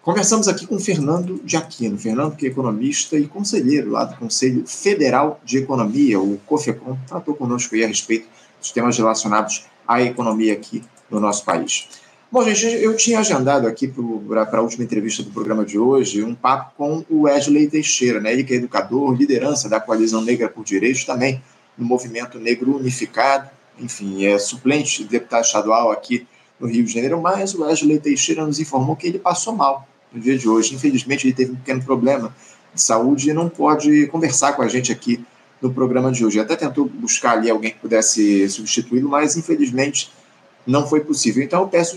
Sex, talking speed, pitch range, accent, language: male, 185 wpm, 120-150 Hz, Brazilian, Portuguese